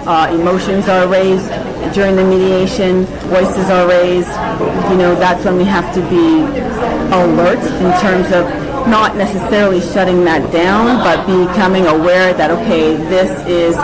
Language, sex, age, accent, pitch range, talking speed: English, female, 40-59, American, 165-190 Hz, 145 wpm